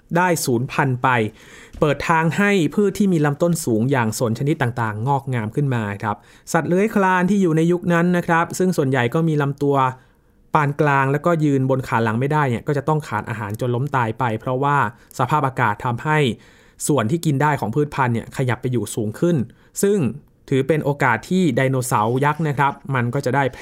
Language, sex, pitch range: Thai, male, 120-155 Hz